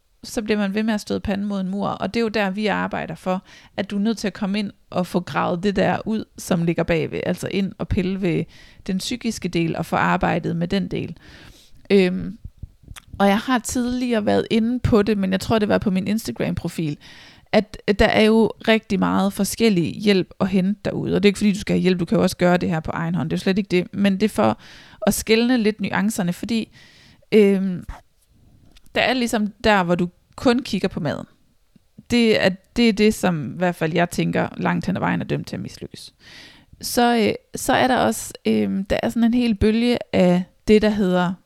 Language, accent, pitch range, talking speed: Danish, native, 185-220 Hz, 230 wpm